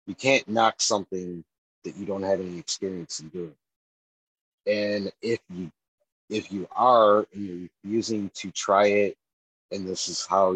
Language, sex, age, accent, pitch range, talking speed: English, male, 30-49, American, 90-110 Hz, 160 wpm